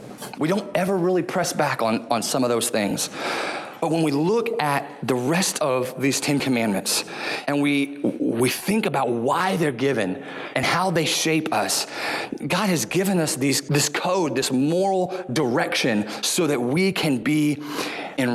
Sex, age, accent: male, 30-49, American